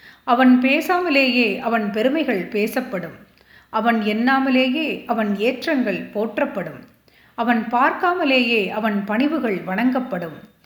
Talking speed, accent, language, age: 85 wpm, native, Tamil, 30-49